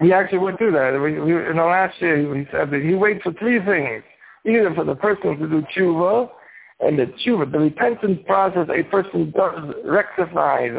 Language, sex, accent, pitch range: English, male, American, 150-190 Hz